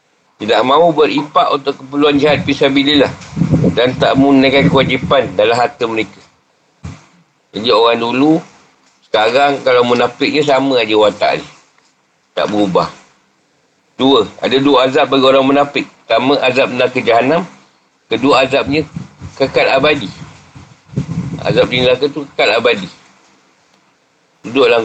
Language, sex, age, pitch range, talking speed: Malay, male, 40-59, 125-145 Hz, 120 wpm